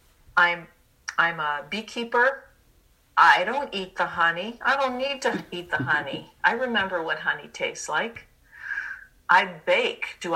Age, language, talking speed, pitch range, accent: 50-69, English, 145 wpm, 170-225 Hz, American